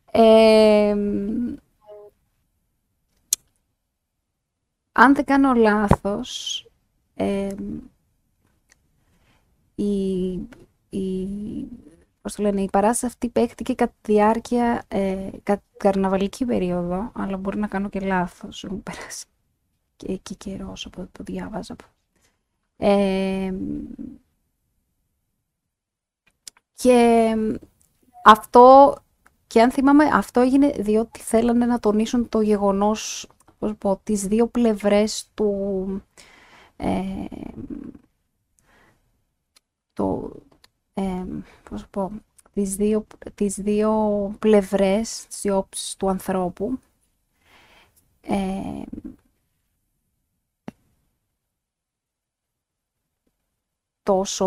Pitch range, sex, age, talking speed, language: 190-225 Hz, female, 20-39, 65 wpm, Greek